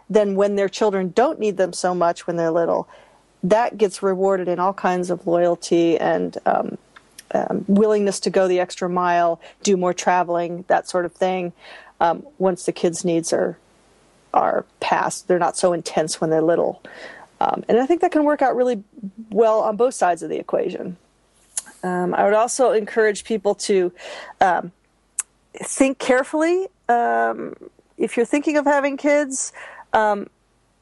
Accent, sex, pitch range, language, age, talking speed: American, female, 180-235 Hz, English, 40-59, 165 wpm